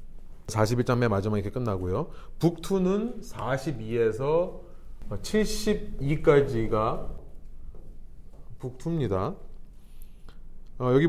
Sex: male